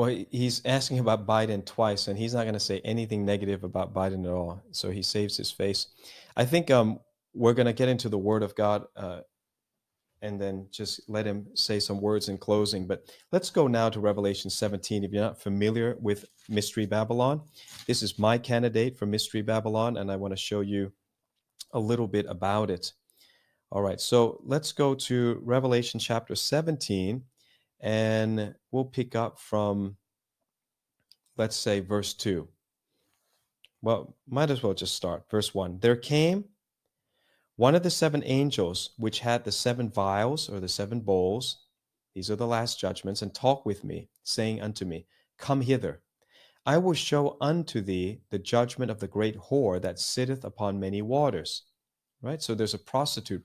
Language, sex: English, male